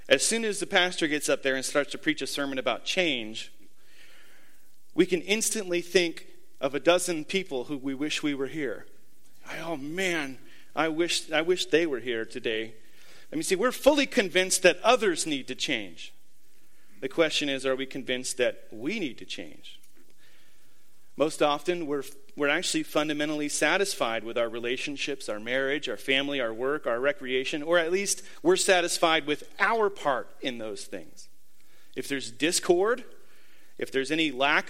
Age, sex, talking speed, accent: 40-59, male, 170 wpm, American